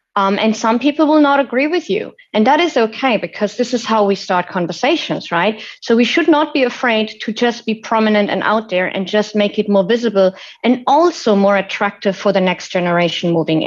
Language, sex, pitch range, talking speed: English, female, 180-225 Hz, 215 wpm